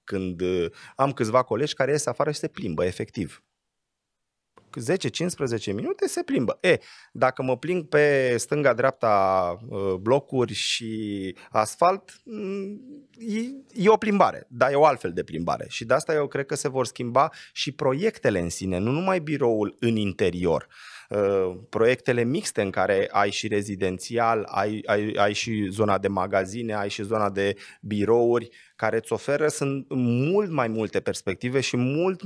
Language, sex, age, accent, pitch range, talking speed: Romanian, male, 30-49, native, 110-160 Hz, 145 wpm